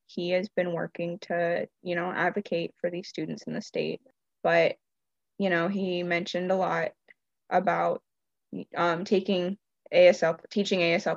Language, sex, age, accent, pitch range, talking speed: English, female, 10-29, American, 175-210 Hz, 145 wpm